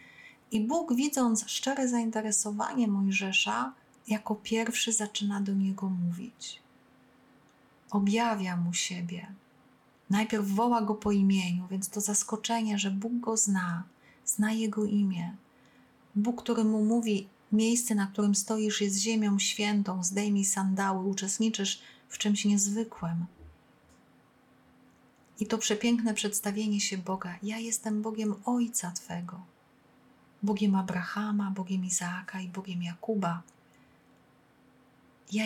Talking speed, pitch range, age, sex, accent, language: 110 wpm, 195-220 Hz, 30-49, female, native, Polish